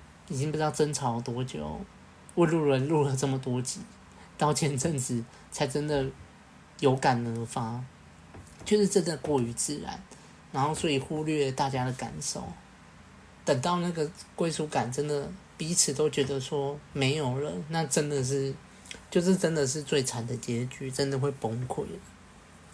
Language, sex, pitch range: Chinese, male, 130-155 Hz